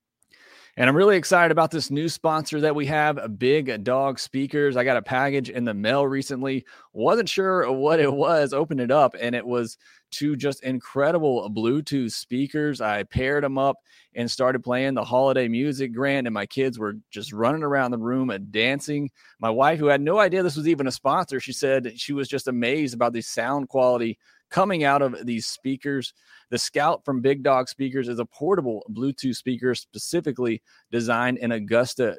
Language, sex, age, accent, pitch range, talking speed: English, male, 30-49, American, 115-140 Hz, 190 wpm